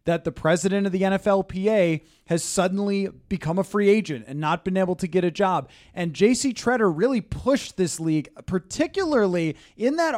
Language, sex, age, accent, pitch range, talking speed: English, male, 20-39, American, 160-210 Hz, 175 wpm